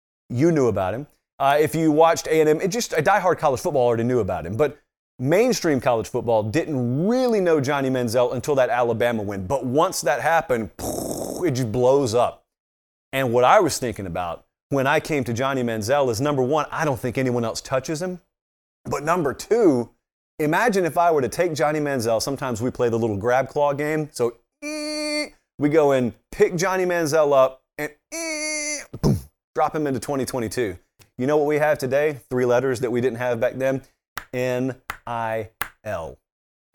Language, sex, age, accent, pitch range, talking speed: English, male, 30-49, American, 120-160 Hz, 180 wpm